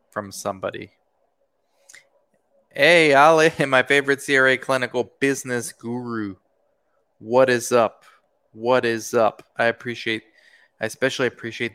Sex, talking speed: male, 105 wpm